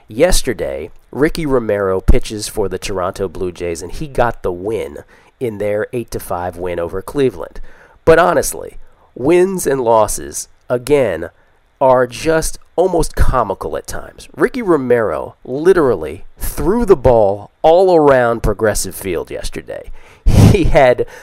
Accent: American